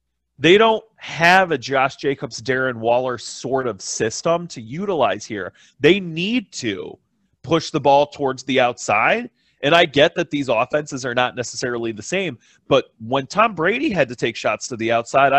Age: 30-49